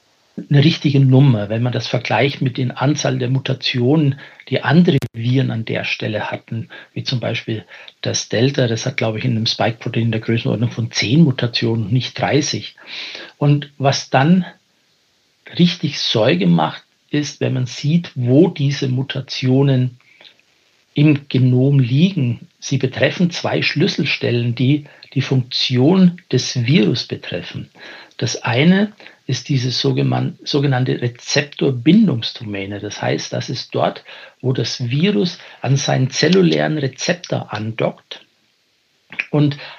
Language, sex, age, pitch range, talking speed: German, male, 60-79, 125-155 Hz, 130 wpm